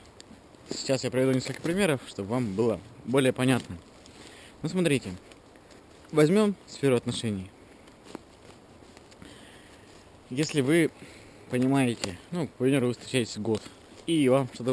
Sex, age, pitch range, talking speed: male, 20-39, 105-140 Hz, 105 wpm